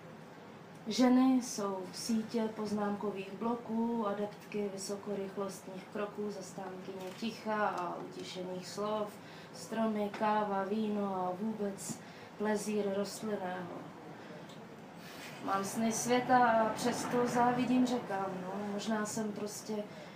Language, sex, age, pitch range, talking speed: Czech, female, 20-39, 195-220 Hz, 100 wpm